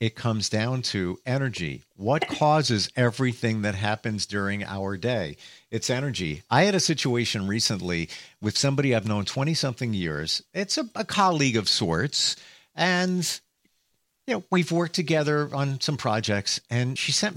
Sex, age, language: male, 50-69, English